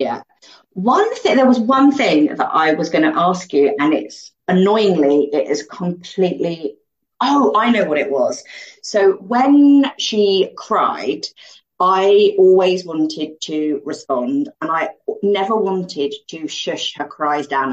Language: English